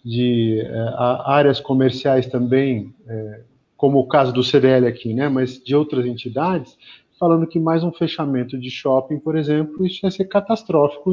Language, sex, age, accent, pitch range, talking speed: Portuguese, male, 50-69, Brazilian, 130-175 Hz, 160 wpm